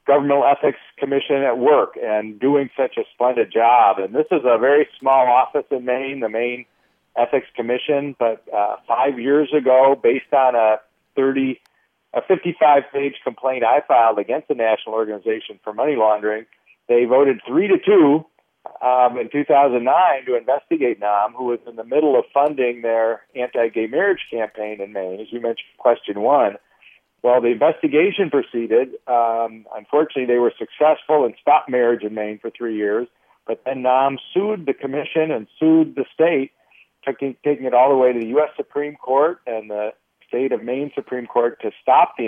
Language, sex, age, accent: English, male, 40-59, American